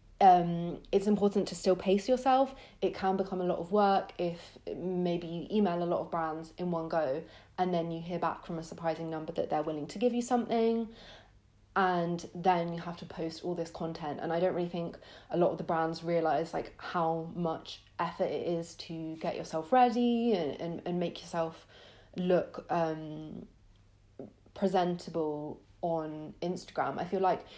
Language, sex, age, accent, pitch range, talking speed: English, female, 30-49, British, 160-180 Hz, 185 wpm